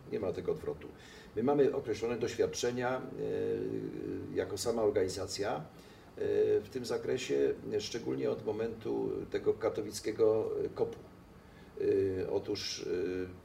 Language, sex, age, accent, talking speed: Polish, male, 50-69, native, 110 wpm